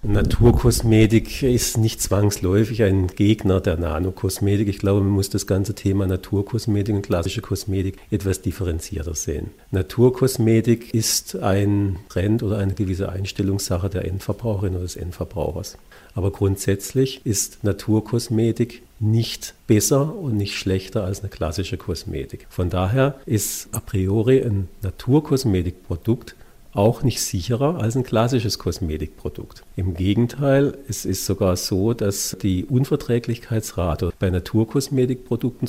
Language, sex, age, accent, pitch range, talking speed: German, male, 50-69, German, 95-115 Hz, 125 wpm